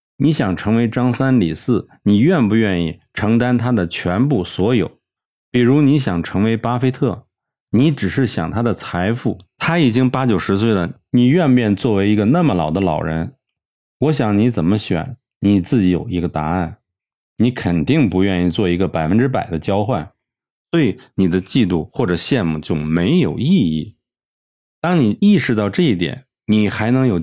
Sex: male